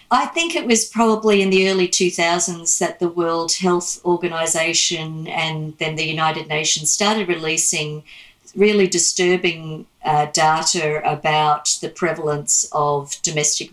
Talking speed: 130 wpm